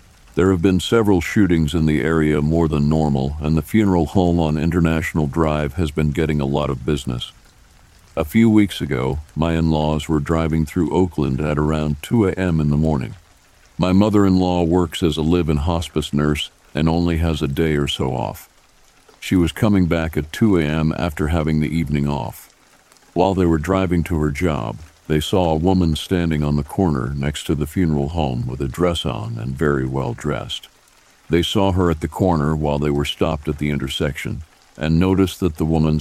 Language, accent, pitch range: English, American, 75-85 Hz